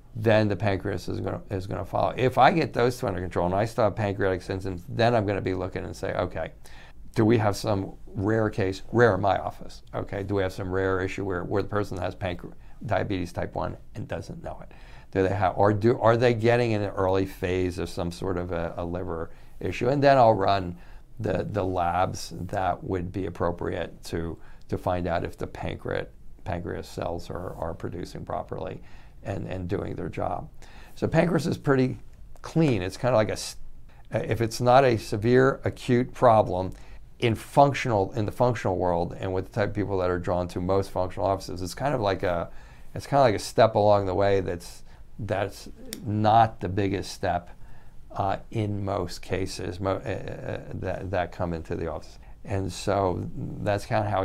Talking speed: 200 wpm